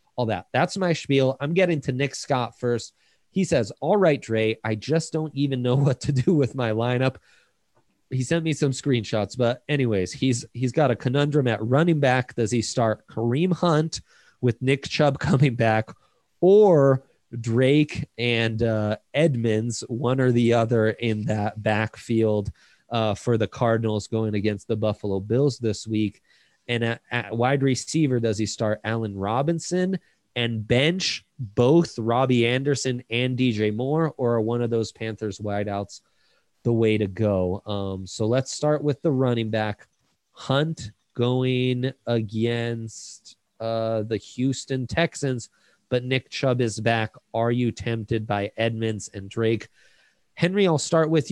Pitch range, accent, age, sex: 110-135 Hz, American, 30-49, male